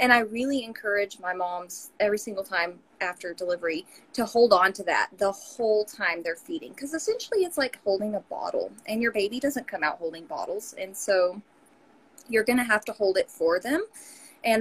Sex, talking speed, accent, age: female, 195 wpm, American, 30-49